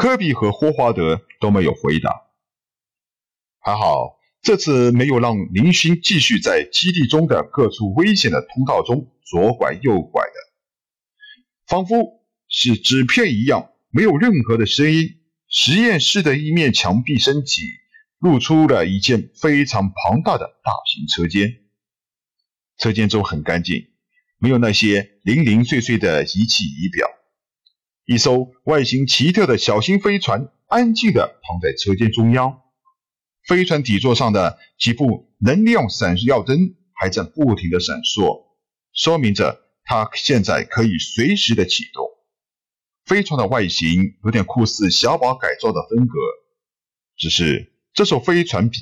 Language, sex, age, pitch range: Chinese, male, 50-69, 115-185 Hz